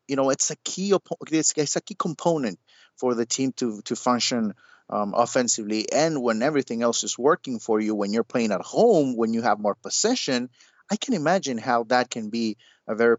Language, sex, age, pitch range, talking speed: English, male, 30-49, 115-150 Hz, 210 wpm